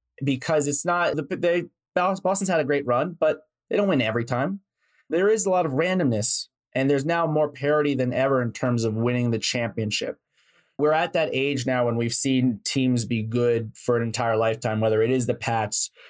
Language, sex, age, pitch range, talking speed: English, male, 20-39, 115-145 Hz, 205 wpm